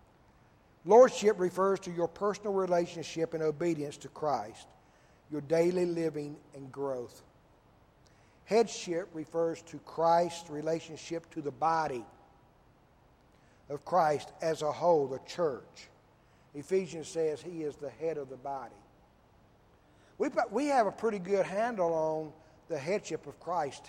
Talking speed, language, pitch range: 130 wpm, English, 155-215 Hz